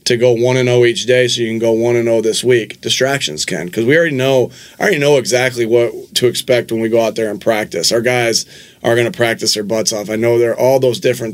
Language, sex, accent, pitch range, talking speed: English, male, American, 115-125 Hz, 270 wpm